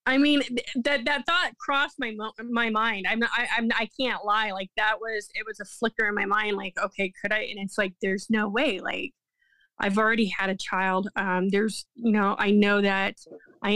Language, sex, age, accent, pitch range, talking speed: English, female, 20-39, American, 195-220 Hz, 215 wpm